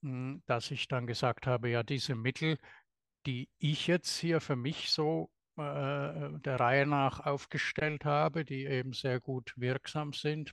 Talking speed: 155 wpm